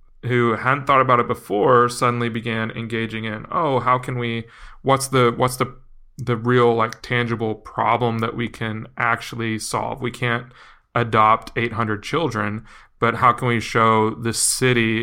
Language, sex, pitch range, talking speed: English, male, 110-120 Hz, 165 wpm